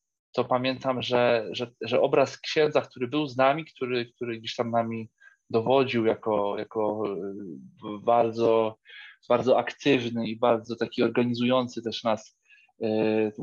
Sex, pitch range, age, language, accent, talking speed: male, 120-155 Hz, 20-39, Polish, native, 130 wpm